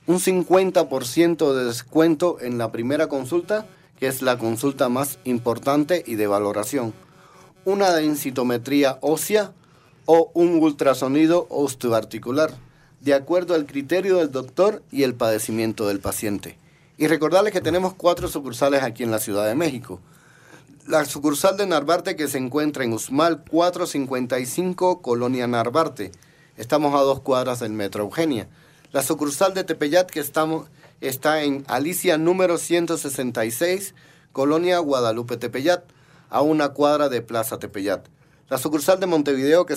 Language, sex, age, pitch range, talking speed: Spanish, male, 40-59, 125-165 Hz, 140 wpm